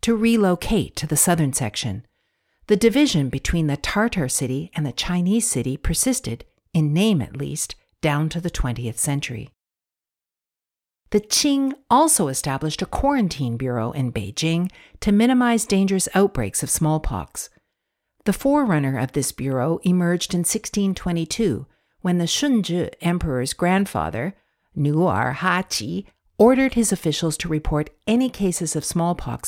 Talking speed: 130 wpm